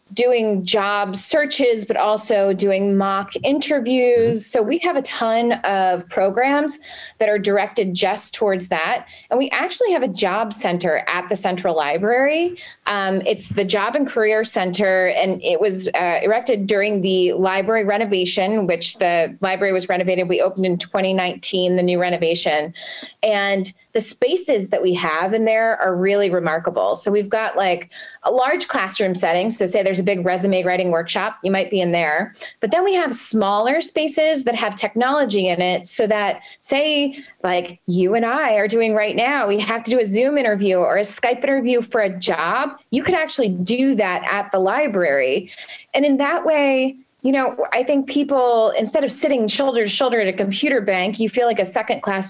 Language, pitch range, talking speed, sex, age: English, 190-245 Hz, 185 wpm, female, 20-39